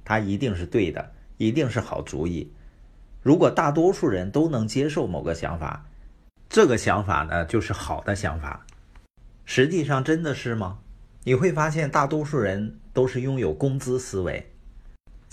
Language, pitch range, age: Chinese, 85-130 Hz, 50-69